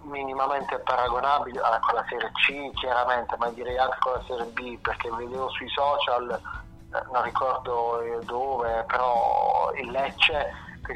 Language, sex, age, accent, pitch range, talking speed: Italian, male, 30-49, native, 115-140 Hz, 135 wpm